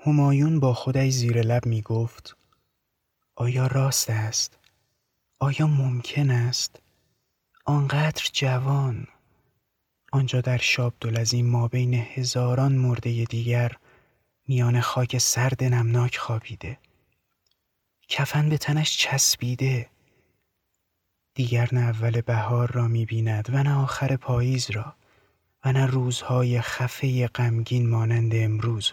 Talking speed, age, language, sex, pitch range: 105 wpm, 30-49, Persian, male, 115-125 Hz